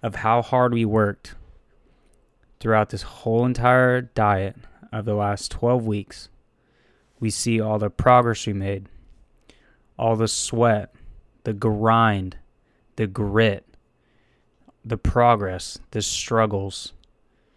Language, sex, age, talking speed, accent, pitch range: English, male, 20-39, 115 wpm, American, 105-125 Hz